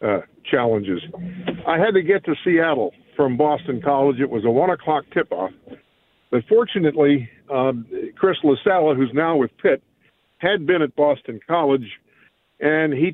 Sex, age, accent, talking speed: male, 60-79, American, 150 wpm